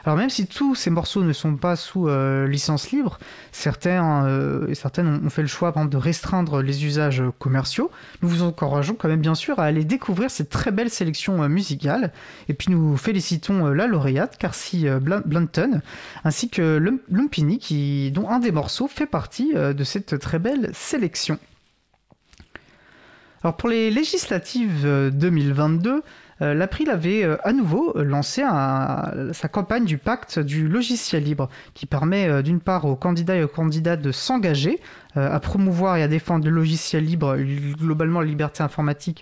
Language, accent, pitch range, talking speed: French, French, 145-190 Hz, 160 wpm